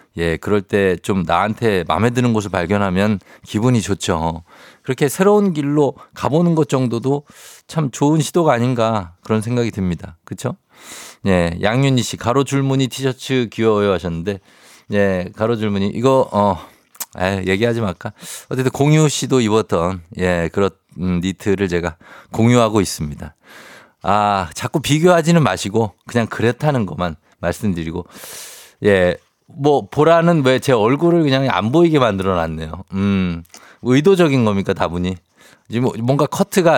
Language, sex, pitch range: Korean, male, 95-135 Hz